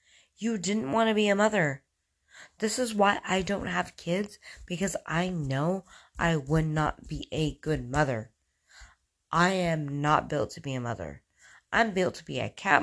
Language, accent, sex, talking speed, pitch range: English, American, female, 180 wpm, 130-180 Hz